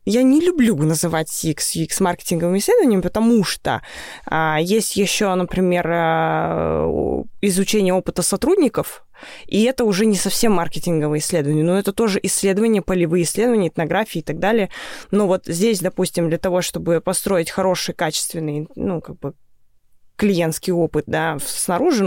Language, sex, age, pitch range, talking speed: Russian, female, 20-39, 165-205 Hz, 140 wpm